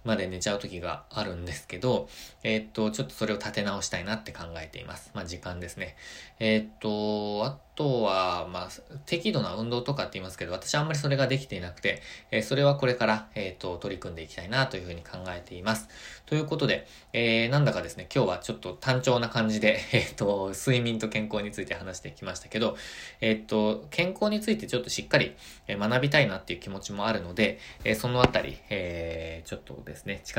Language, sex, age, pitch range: Japanese, male, 20-39, 95-125 Hz